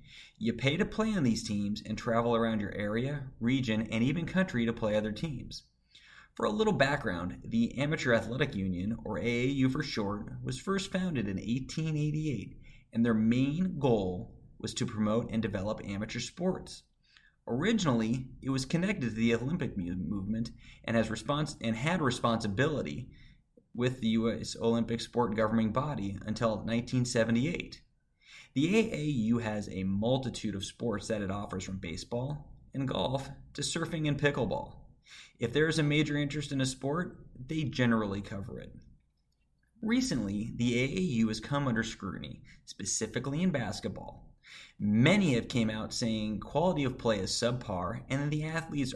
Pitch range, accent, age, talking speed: 110-140 Hz, American, 30-49, 150 wpm